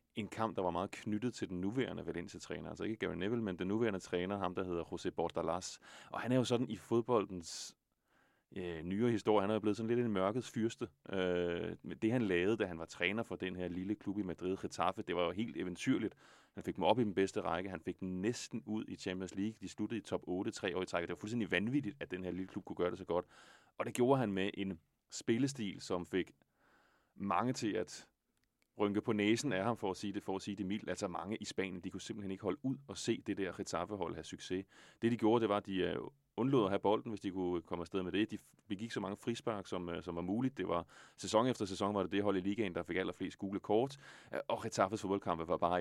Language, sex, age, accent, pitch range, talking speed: Danish, male, 30-49, native, 90-110 Hz, 255 wpm